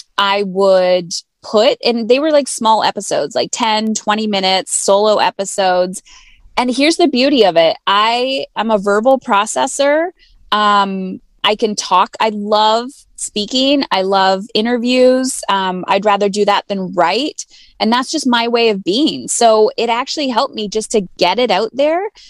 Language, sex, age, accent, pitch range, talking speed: English, female, 20-39, American, 195-260 Hz, 165 wpm